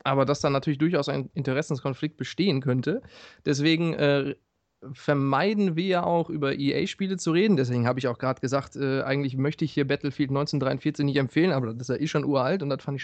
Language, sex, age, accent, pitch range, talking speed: German, male, 30-49, German, 135-160 Hz, 205 wpm